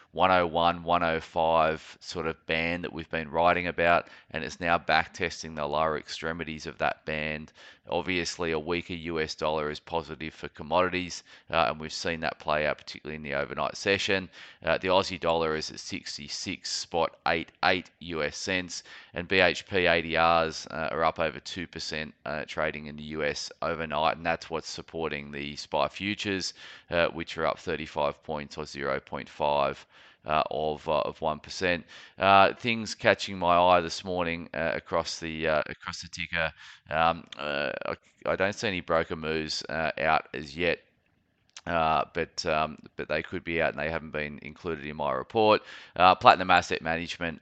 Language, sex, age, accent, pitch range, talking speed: English, male, 20-39, Australian, 75-85 Hz, 165 wpm